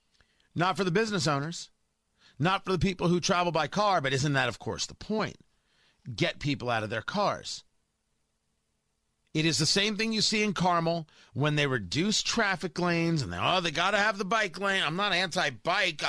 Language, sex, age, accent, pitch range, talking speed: English, male, 40-59, American, 140-190 Hz, 200 wpm